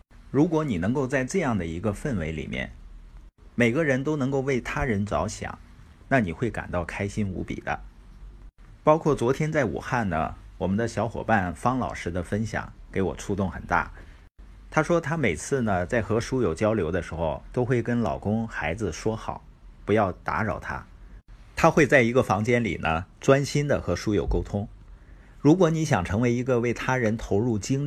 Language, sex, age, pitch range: Chinese, male, 50-69, 90-125 Hz